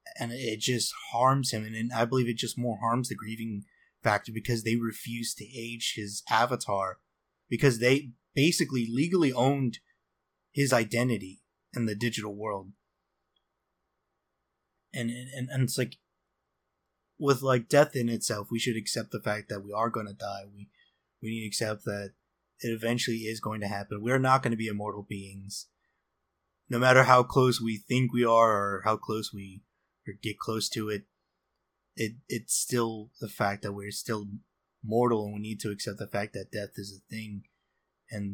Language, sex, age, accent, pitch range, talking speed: English, male, 20-39, American, 105-120 Hz, 175 wpm